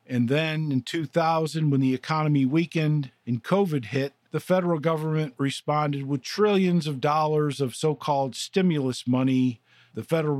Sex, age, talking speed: male, 50-69, 145 wpm